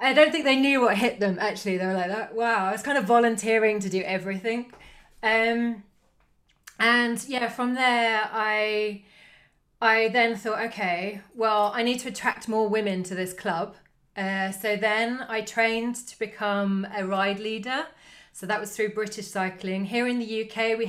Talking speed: 180 wpm